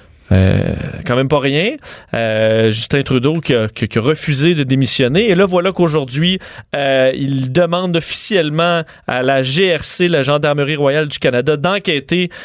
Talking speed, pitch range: 165 wpm, 140-170 Hz